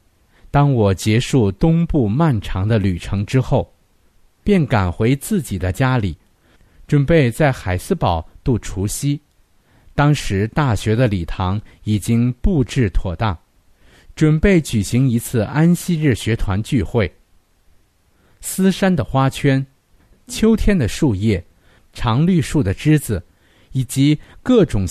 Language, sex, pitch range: Chinese, male, 95-145 Hz